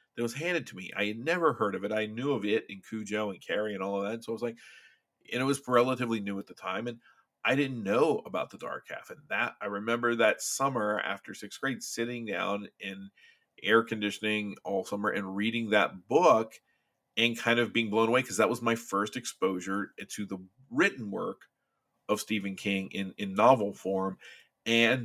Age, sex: 40-59, male